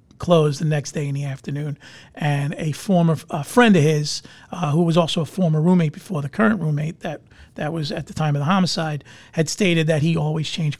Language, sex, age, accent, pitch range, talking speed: English, male, 40-59, American, 150-175 Hz, 215 wpm